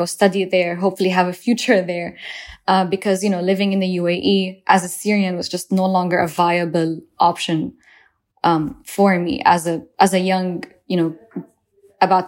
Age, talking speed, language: 10-29, 175 wpm, English